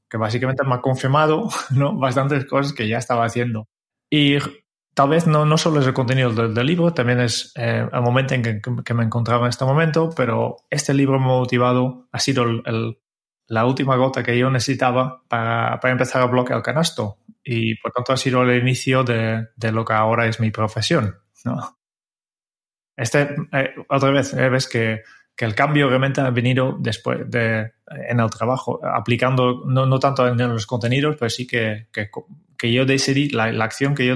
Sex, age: male, 20-39